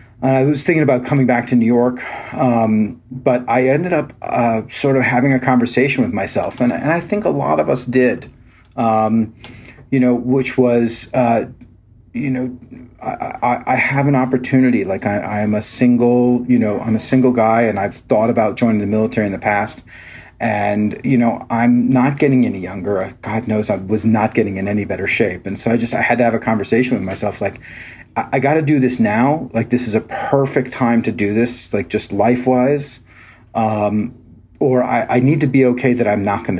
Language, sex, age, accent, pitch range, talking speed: English, male, 40-59, American, 110-130 Hz, 215 wpm